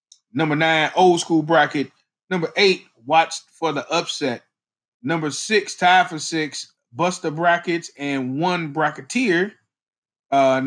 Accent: American